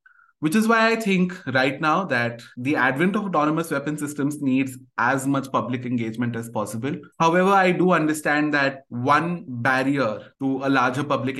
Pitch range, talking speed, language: 125-150 Hz, 170 wpm, English